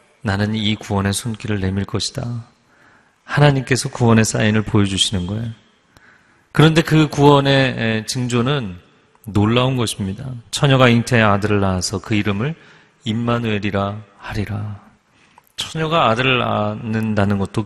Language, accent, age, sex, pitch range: Korean, native, 40-59, male, 100-125 Hz